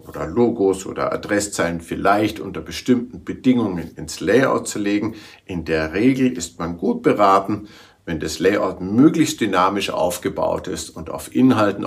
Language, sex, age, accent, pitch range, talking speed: German, male, 50-69, German, 90-110 Hz, 145 wpm